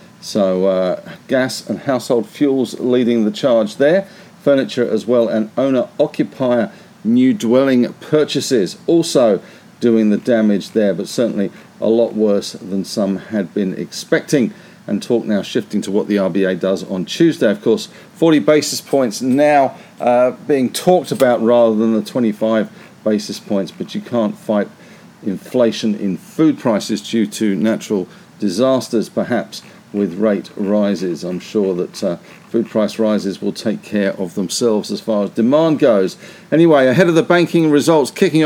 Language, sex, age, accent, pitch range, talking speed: English, male, 50-69, British, 110-150 Hz, 155 wpm